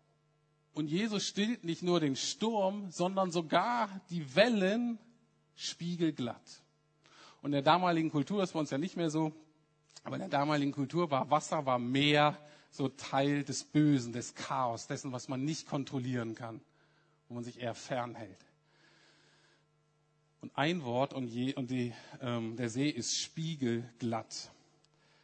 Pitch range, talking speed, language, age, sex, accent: 125-155 Hz, 145 wpm, German, 50-69, male, German